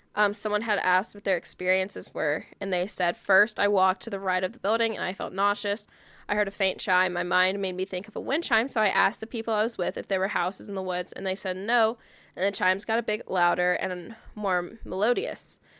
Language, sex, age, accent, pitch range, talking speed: English, female, 10-29, American, 185-220 Hz, 255 wpm